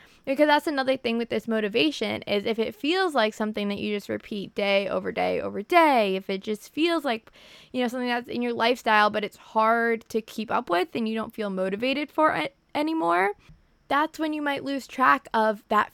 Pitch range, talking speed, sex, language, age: 215-260 Hz, 215 wpm, female, English, 20-39